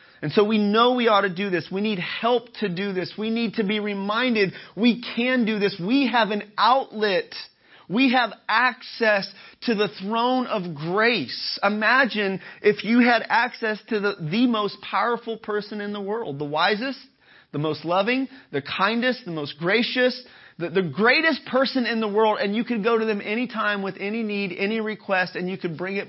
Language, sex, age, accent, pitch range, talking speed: English, male, 30-49, American, 185-235 Hz, 195 wpm